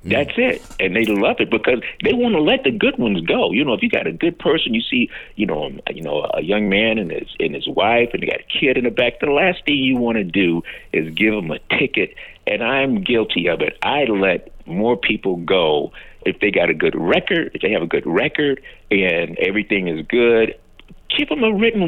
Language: English